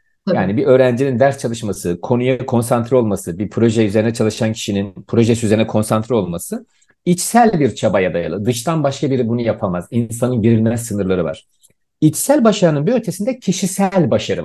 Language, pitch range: Turkish, 120-180 Hz